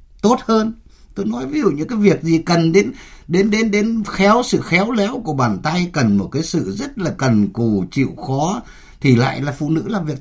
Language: Vietnamese